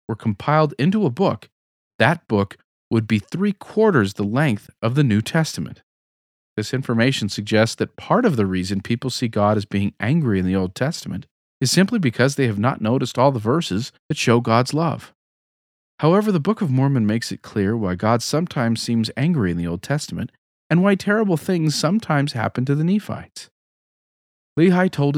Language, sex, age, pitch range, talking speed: English, male, 40-59, 110-155 Hz, 180 wpm